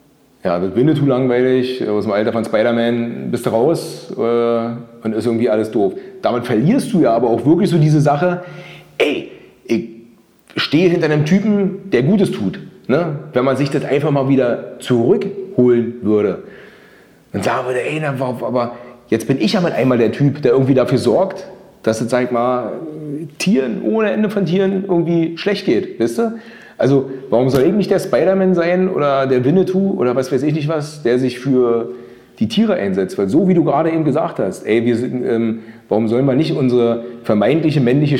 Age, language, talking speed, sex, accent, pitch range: 30-49, German, 190 wpm, male, German, 120-175 Hz